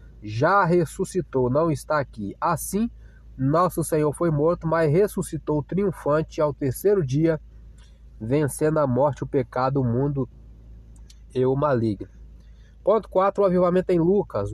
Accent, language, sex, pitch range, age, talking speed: Brazilian, Portuguese, male, 130-165 Hz, 20-39, 130 wpm